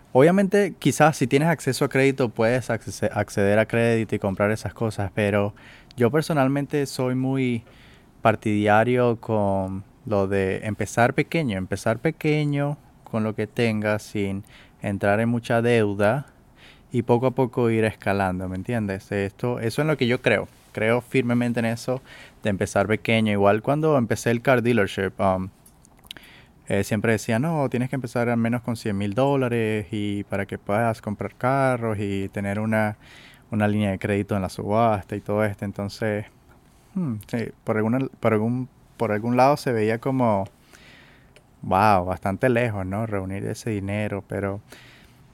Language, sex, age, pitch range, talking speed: Spanish, male, 20-39, 100-125 Hz, 155 wpm